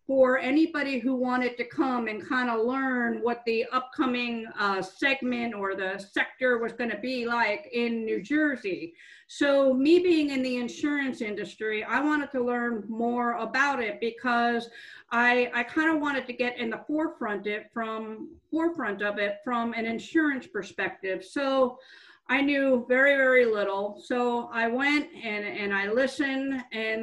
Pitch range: 230-305 Hz